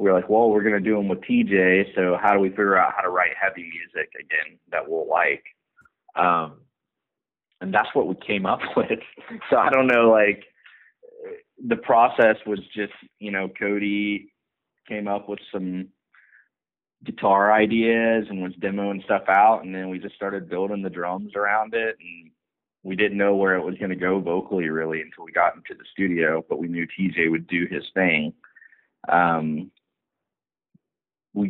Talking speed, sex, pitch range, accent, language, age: 180 wpm, male, 90-115 Hz, American, English, 30-49